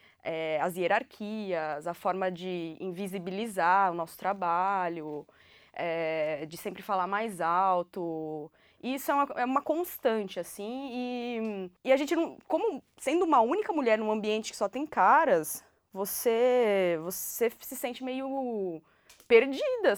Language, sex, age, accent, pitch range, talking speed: Portuguese, female, 20-39, Brazilian, 190-265 Hz, 125 wpm